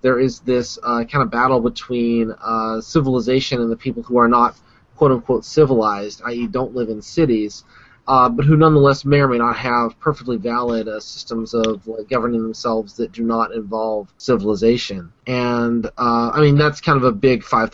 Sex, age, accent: male, 20-39, American